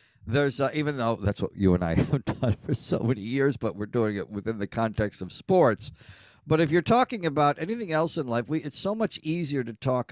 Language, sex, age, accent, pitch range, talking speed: English, male, 50-69, American, 105-145 Hz, 235 wpm